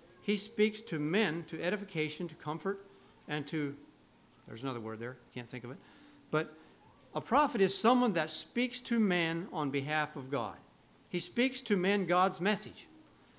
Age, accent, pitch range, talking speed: 50-69, American, 135-195 Hz, 165 wpm